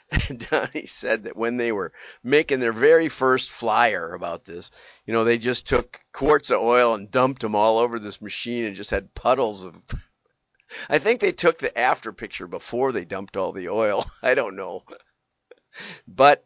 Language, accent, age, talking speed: English, American, 50-69, 180 wpm